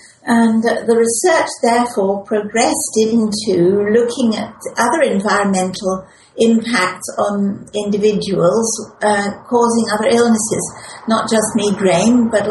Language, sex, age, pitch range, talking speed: English, female, 60-79, 195-235 Hz, 105 wpm